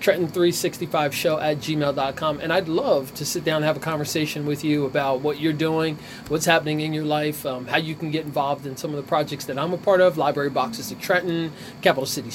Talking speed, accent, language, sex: 225 wpm, American, English, male